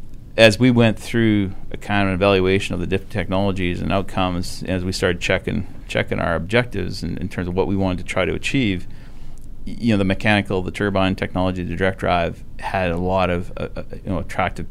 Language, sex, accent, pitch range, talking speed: English, male, American, 90-105 Hz, 215 wpm